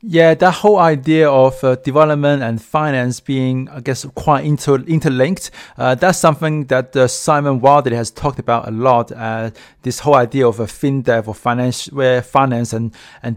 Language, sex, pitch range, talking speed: English, male, 120-145 Hz, 185 wpm